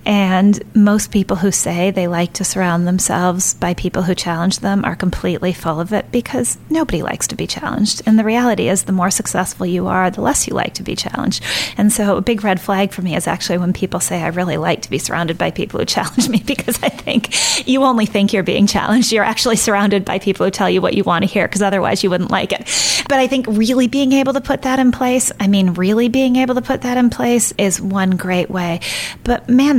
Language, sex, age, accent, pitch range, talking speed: English, female, 30-49, American, 180-220 Hz, 245 wpm